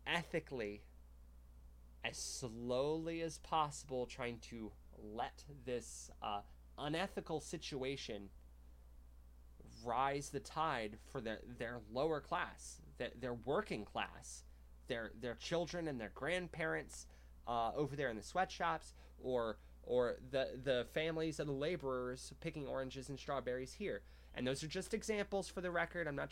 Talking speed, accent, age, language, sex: 135 wpm, American, 20-39, English, male